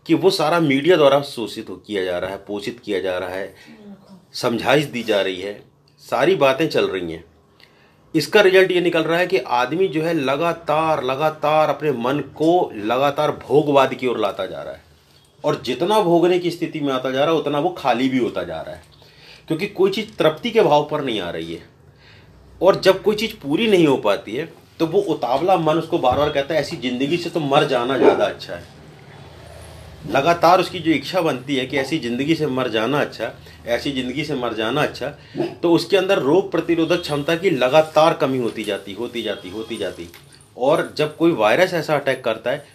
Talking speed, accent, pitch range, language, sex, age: 205 wpm, native, 125-170 Hz, Hindi, male, 40-59